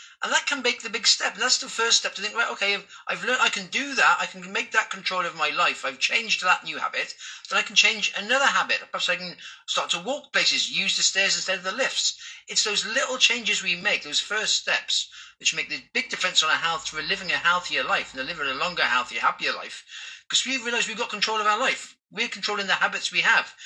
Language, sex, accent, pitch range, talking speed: English, male, British, 180-235 Hz, 250 wpm